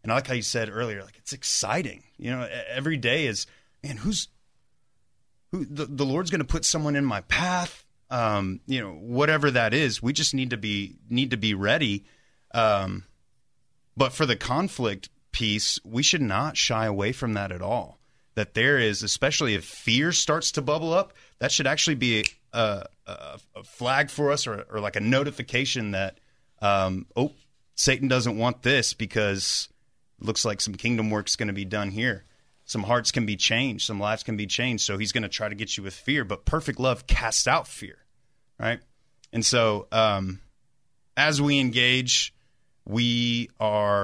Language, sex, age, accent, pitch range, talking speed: English, male, 30-49, American, 105-135 Hz, 185 wpm